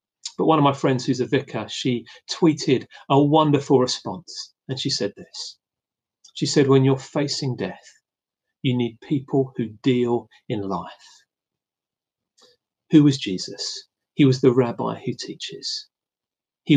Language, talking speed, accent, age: English, 145 wpm, British, 40-59